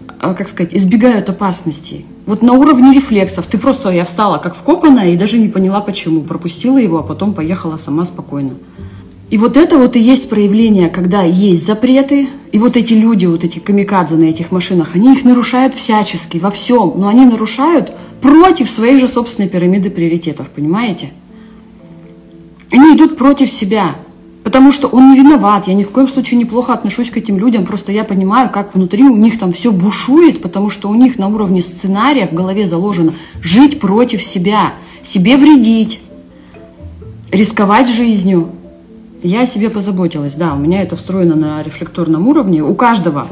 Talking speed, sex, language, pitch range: 170 wpm, female, Russian, 170-240 Hz